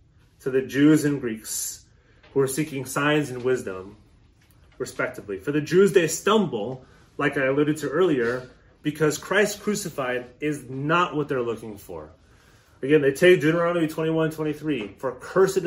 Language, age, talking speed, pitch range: English, 30-49, 150 wpm, 120-165 Hz